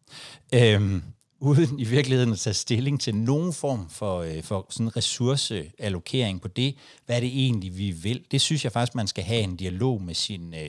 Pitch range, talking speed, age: 105-135 Hz, 175 wpm, 60-79